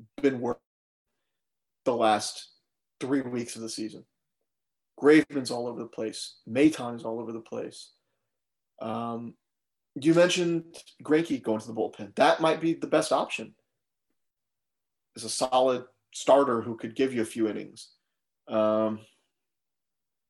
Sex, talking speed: male, 135 wpm